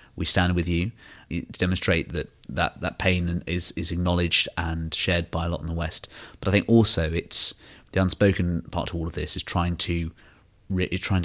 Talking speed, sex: 205 wpm, male